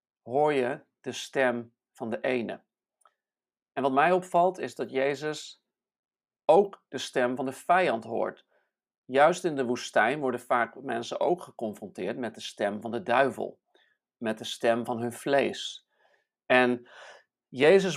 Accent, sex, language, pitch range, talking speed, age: Dutch, male, Dutch, 120-155 Hz, 145 wpm, 50-69